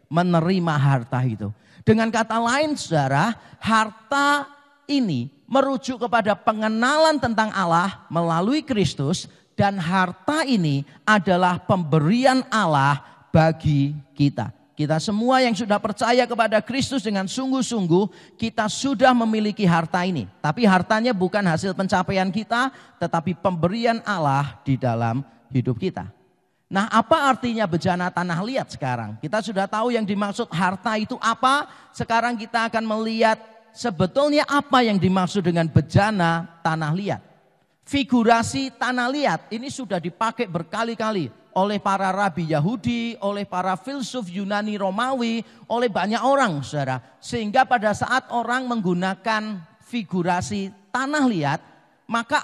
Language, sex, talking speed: Indonesian, male, 120 wpm